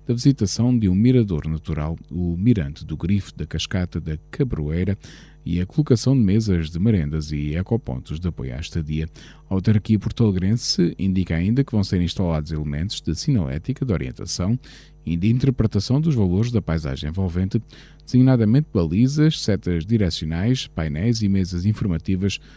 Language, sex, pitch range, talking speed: Portuguese, male, 85-125 Hz, 150 wpm